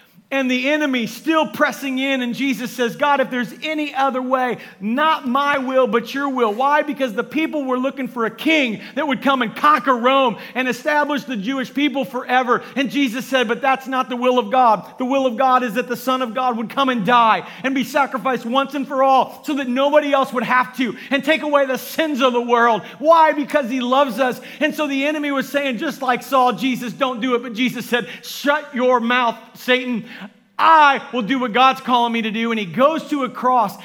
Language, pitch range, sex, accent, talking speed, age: English, 195-270 Hz, male, American, 225 wpm, 40-59